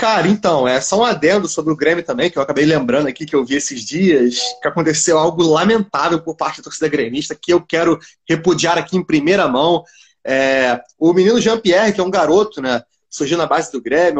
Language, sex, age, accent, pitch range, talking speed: Portuguese, male, 20-39, Brazilian, 160-225 Hz, 220 wpm